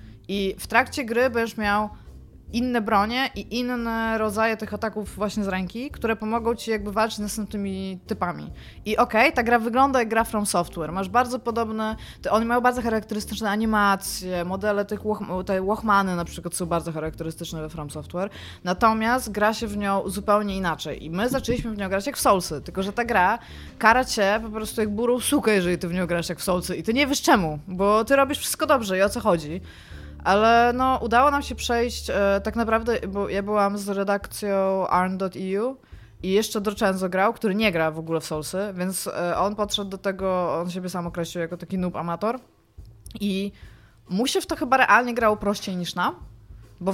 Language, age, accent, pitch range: Polish, 20-39, native, 180-225 Hz